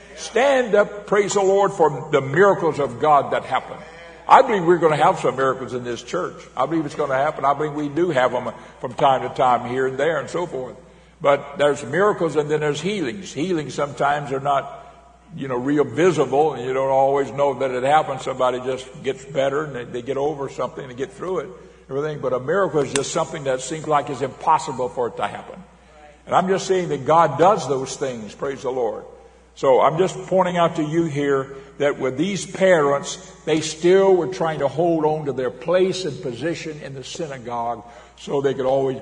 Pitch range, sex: 125-170 Hz, male